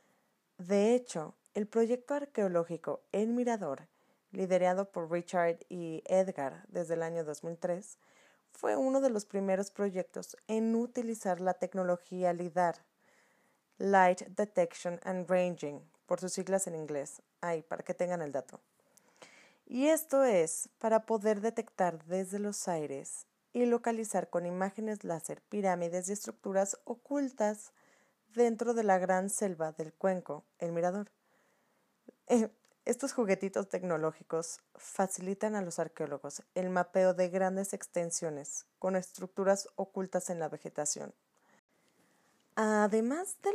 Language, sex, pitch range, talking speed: Spanish, female, 175-220 Hz, 125 wpm